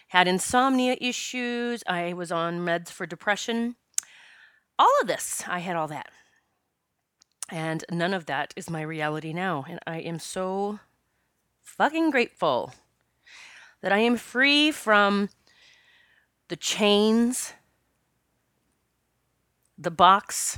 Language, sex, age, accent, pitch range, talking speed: English, female, 30-49, American, 175-230 Hz, 115 wpm